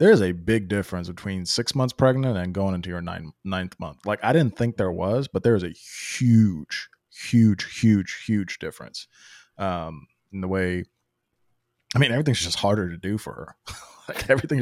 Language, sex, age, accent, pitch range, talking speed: English, male, 20-39, American, 95-125 Hz, 190 wpm